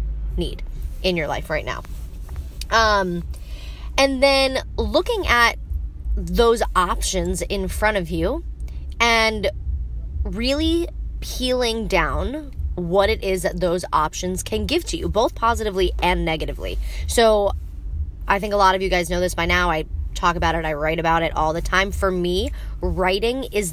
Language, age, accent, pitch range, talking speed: English, 20-39, American, 155-215 Hz, 155 wpm